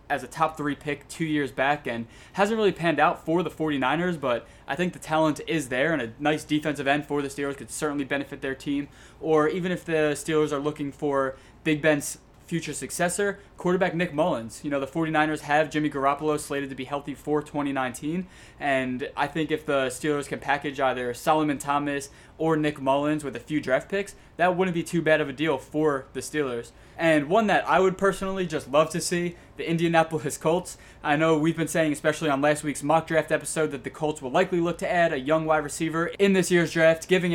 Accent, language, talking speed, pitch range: American, English, 220 wpm, 145-165 Hz